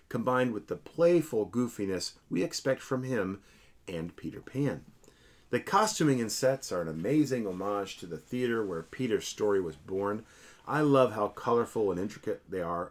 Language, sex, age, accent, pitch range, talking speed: English, male, 40-59, American, 95-130 Hz, 165 wpm